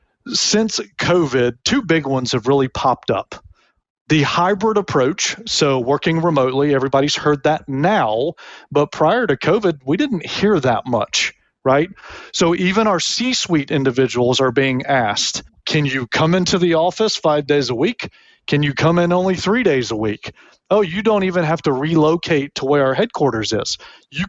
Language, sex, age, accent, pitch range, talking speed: English, male, 40-59, American, 140-180 Hz, 170 wpm